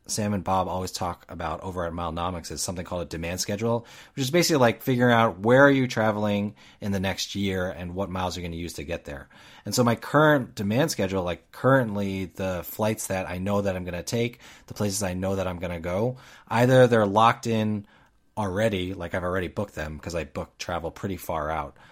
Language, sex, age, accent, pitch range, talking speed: English, male, 30-49, American, 95-120 Hz, 225 wpm